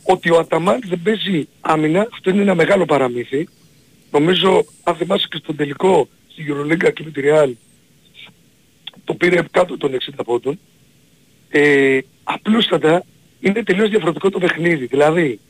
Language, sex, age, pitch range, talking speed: Greek, male, 50-69, 150-200 Hz, 140 wpm